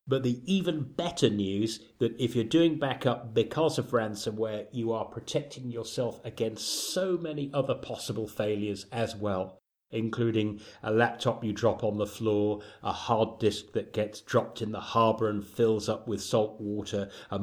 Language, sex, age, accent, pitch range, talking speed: English, male, 30-49, British, 105-120 Hz, 170 wpm